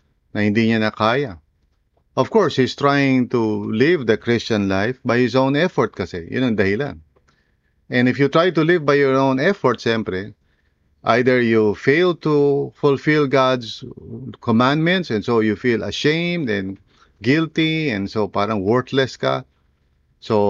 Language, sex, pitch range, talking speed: English, male, 105-135 Hz, 155 wpm